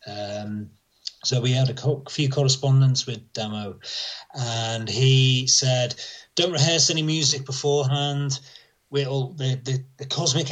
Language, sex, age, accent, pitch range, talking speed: English, male, 30-49, British, 120-145 Hz, 130 wpm